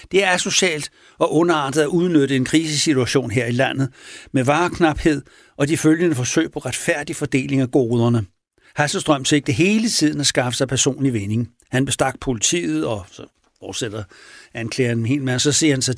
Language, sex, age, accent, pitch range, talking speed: Danish, male, 60-79, native, 125-160 Hz, 165 wpm